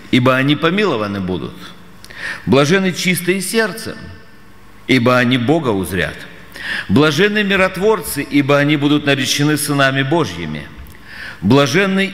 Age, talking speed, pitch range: 50-69, 100 wpm, 110-150 Hz